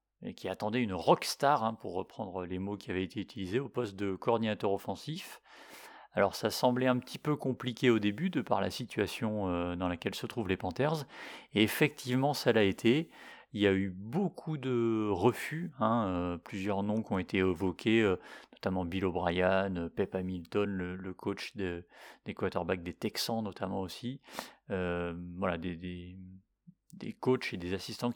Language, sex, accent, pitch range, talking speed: French, male, French, 95-120 Hz, 175 wpm